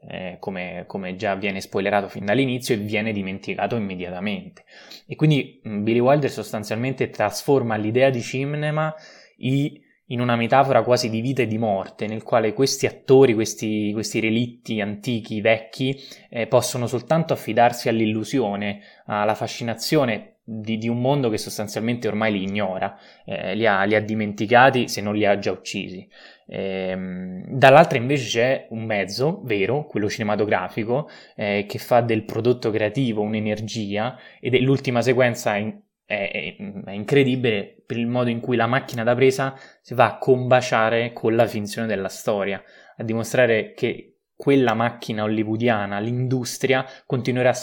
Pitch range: 105-130 Hz